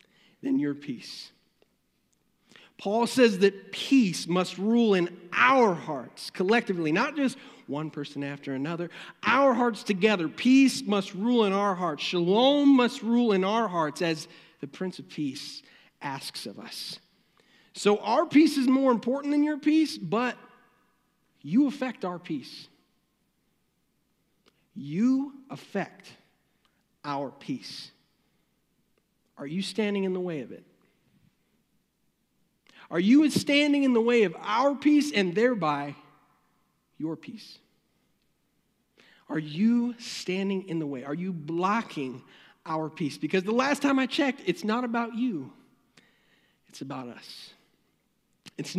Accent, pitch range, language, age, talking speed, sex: American, 170-250 Hz, English, 40-59, 130 wpm, male